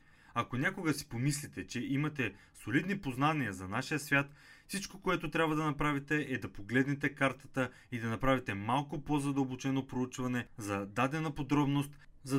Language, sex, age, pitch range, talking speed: Bulgarian, male, 30-49, 115-150 Hz, 145 wpm